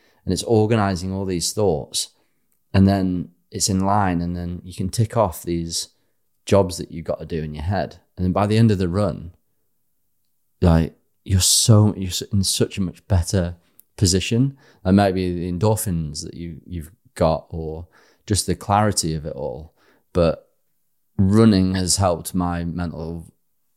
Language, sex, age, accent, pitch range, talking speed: English, male, 30-49, British, 85-100 Hz, 170 wpm